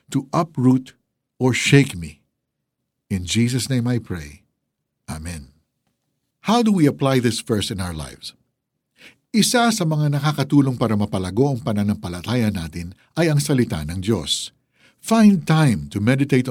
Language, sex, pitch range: Filipino, male, 105-155 Hz